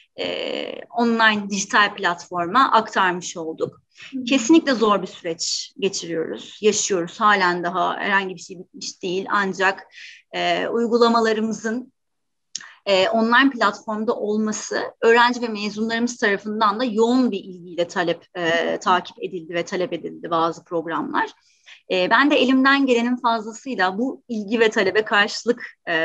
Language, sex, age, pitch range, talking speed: Turkish, female, 30-49, 180-240 Hz, 125 wpm